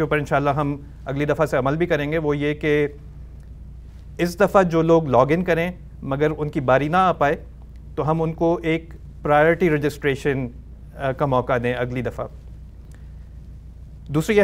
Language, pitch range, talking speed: Urdu, 115-160 Hz, 170 wpm